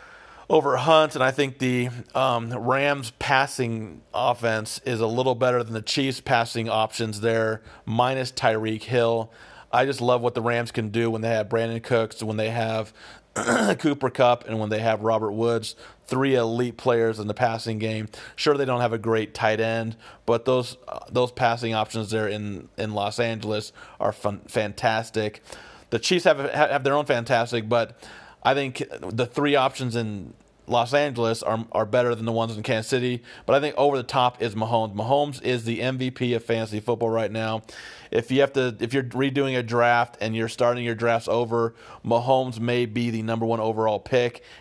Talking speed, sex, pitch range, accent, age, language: 190 wpm, male, 110-130 Hz, American, 40-59, English